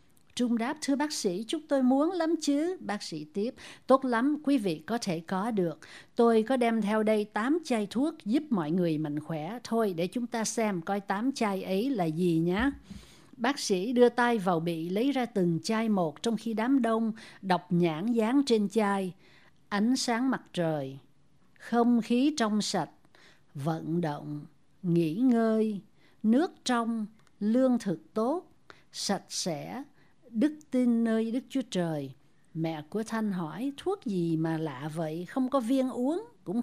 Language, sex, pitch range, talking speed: Vietnamese, female, 175-255 Hz, 170 wpm